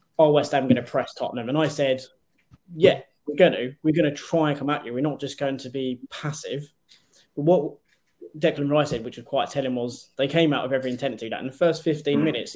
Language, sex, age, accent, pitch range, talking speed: English, male, 20-39, British, 130-160 Hz, 255 wpm